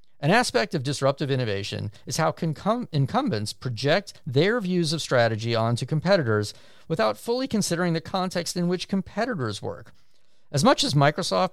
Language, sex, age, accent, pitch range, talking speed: English, male, 40-59, American, 115-180 Hz, 150 wpm